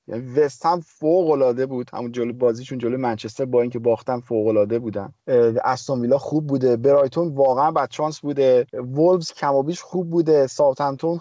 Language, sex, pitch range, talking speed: Persian, male, 125-165 Hz, 150 wpm